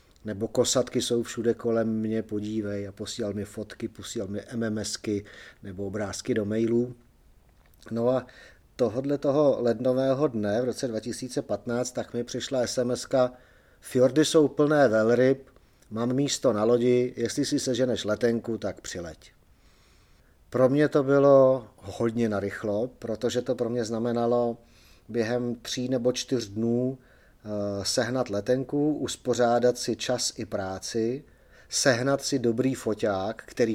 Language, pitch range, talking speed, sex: Czech, 105-125 Hz, 130 wpm, male